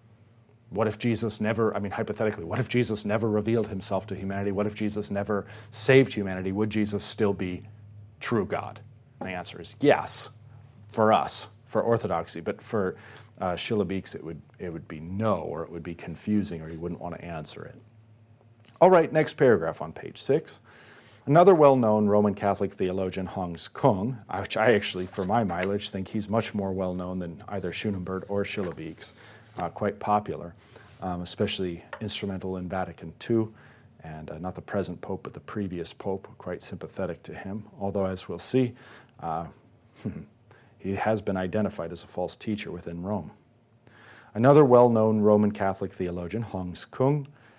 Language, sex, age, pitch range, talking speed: English, male, 40-59, 95-115 Hz, 170 wpm